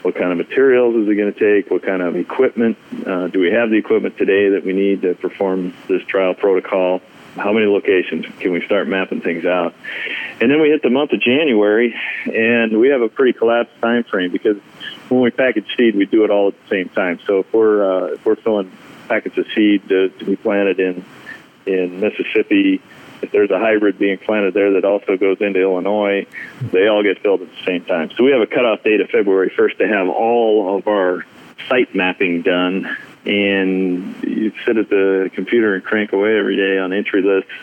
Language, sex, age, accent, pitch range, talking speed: English, male, 40-59, American, 95-115 Hz, 215 wpm